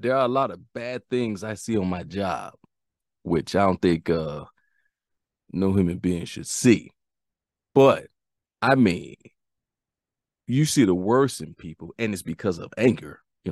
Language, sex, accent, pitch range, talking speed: English, male, American, 90-115 Hz, 165 wpm